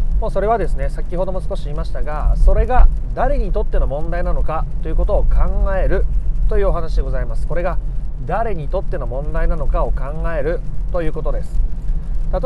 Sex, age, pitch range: male, 30-49, 135-195 Hz